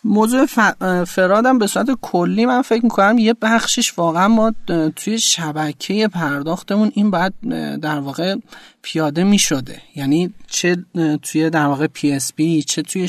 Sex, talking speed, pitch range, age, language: male, 145 wpm, 160-210 Hz, 30-49, Persian